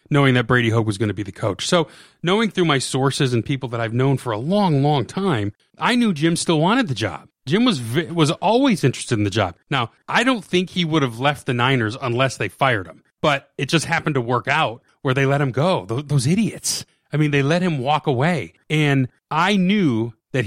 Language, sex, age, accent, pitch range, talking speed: English, male, 30-49, American, 125-165 Hz, 235 wpm